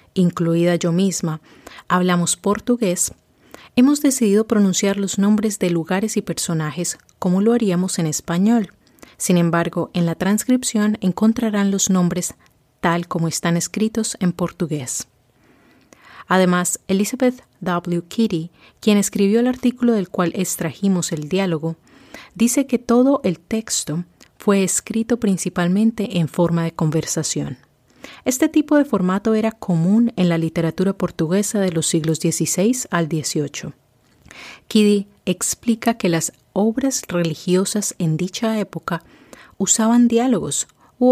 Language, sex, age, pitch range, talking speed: English, female, 30-49, 170-215 Hz, 125 wpm